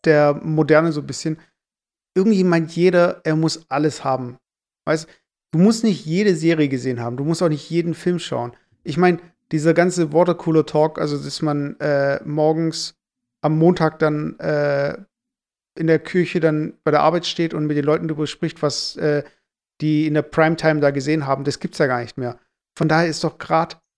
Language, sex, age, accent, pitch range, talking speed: German, male, 50-69, German, 145-170 Hz, 190 wpm